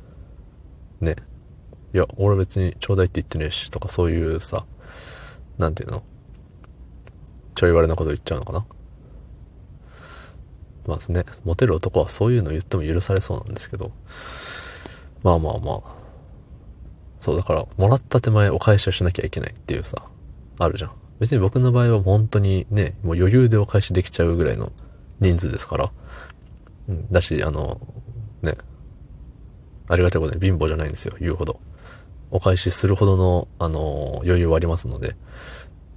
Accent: native